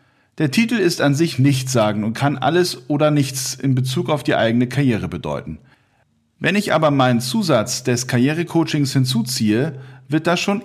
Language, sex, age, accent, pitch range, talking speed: German, male, 40-59, German, 125-155 Hz, 170 wpm